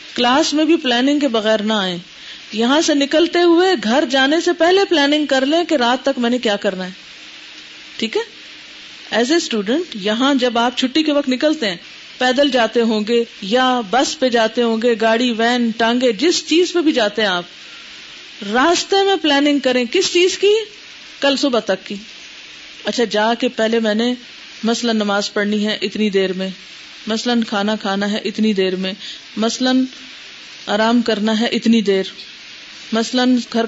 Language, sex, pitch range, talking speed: Urdu, female, 225-315 Hz, 175 wpm